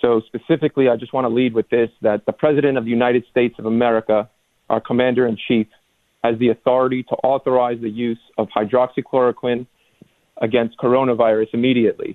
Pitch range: 120-155 Hz